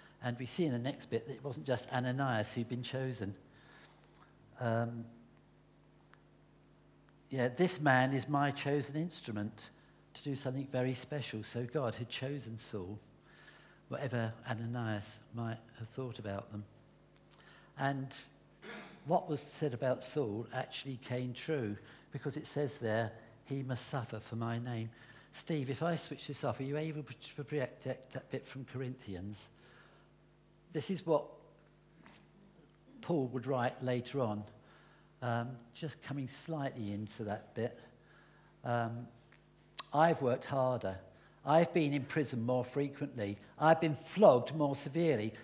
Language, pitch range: English, 120-150 Hz